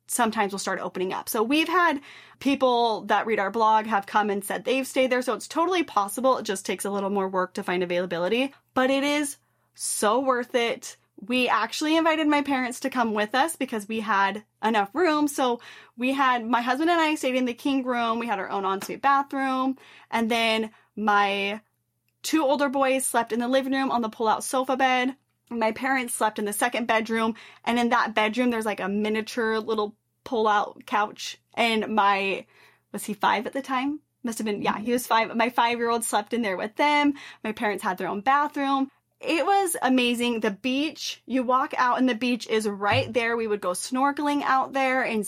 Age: 10-29